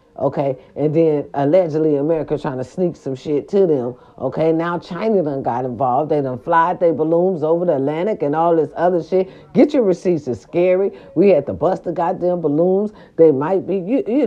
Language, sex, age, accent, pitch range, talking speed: English, female, 40-59, American, 160-215 Hz, 205 wpm